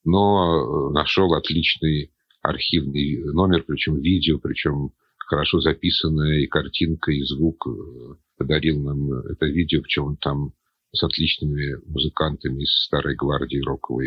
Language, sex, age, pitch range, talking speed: Russian, male, 50-69, 75-90 Hz, 120 wpm